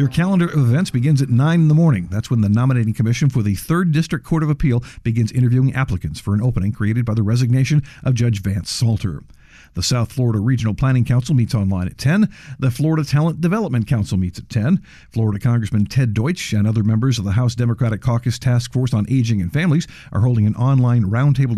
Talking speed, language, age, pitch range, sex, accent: 215 wpm, English, 50-69, 110-150 Hz, male, American